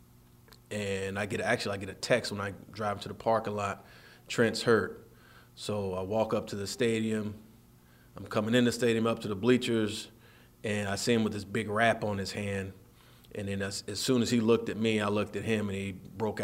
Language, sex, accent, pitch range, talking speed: English, male, American, 100-115 Hz, 225 wpm